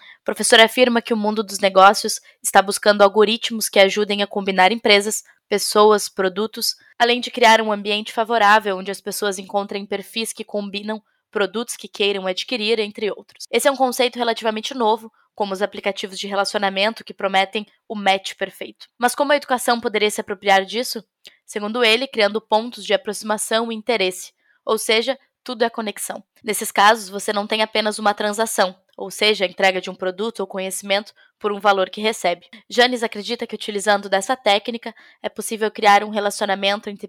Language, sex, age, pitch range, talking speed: Portuguese, female, 10-29, 200-230 Hz, 175 wpm